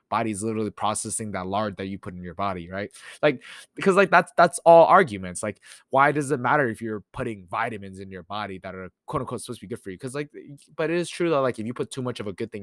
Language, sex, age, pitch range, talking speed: English, male, 20-39, 100-145 Hz, 275 wpm